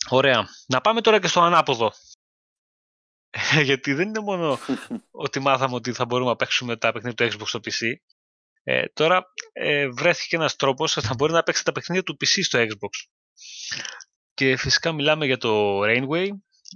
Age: 20-39